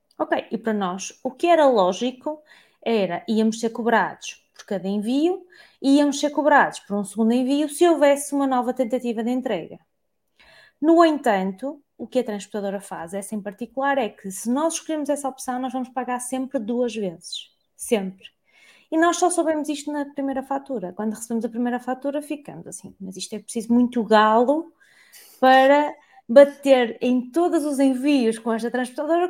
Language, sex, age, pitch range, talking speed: Portuguese, female, 20-39, 215-280 Hz, 170 wpm